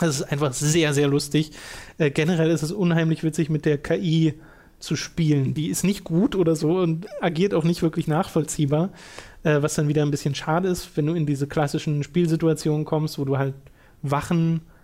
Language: German